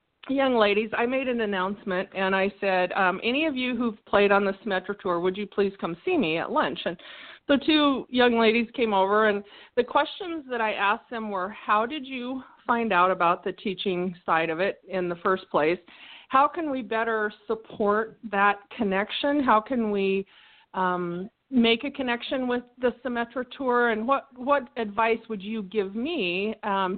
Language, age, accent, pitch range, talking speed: English, 40-59, American, 195-245 Hz, 185 wpm